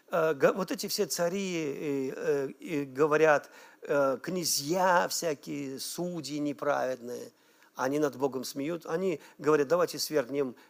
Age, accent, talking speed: 50-69, native, 95 wpm